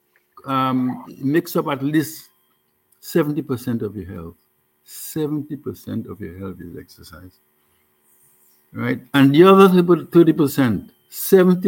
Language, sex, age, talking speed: English, male, 60-79, 105 wpm